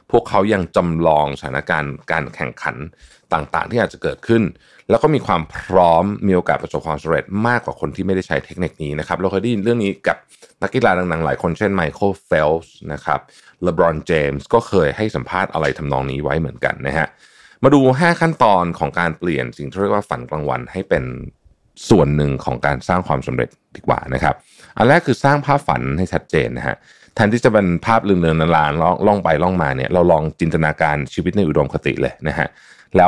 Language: Thai